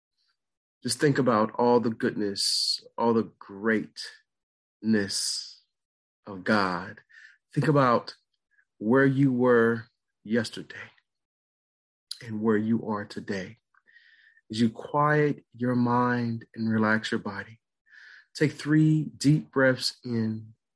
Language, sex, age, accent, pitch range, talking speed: English, male, 30-49, American, 110-130 Hz, 105 wpm